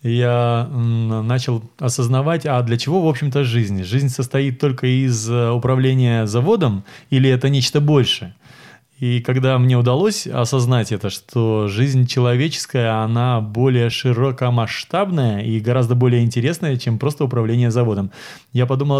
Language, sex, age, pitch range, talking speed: Russian, male, 20-39, 120-140 Hz, 130 wpm